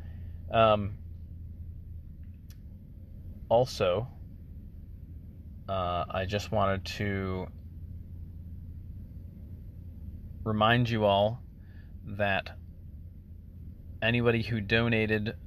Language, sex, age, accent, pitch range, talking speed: English, male, 30-49, American, 85-100 Hz, 55 wpm